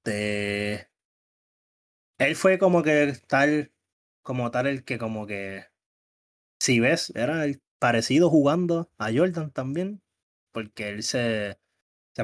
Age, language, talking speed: 20-39, Spanish, 125 wpm